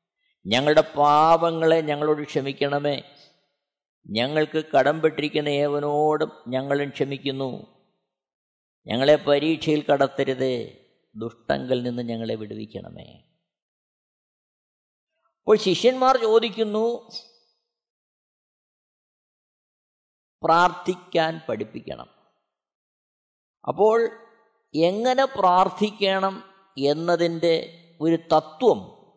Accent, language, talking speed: native, Malayalam, 55 wpm